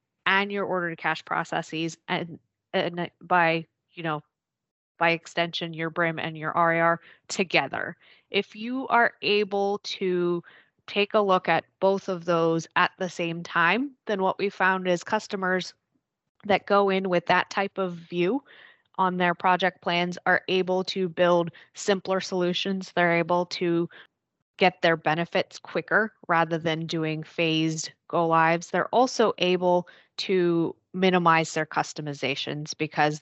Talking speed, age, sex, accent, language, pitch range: 145 wpm, 20-39, female, American, English, 165-195 Hz